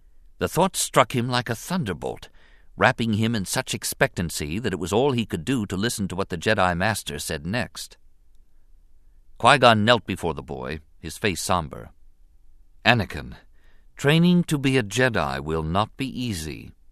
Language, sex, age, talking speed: English, male, 50-69, 165 wpm